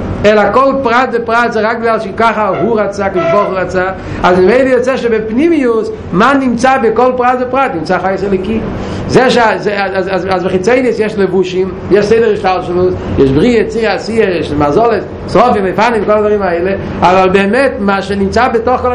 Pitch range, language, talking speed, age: 200-260 Hz, Hebrew, 175 wpm, 50-69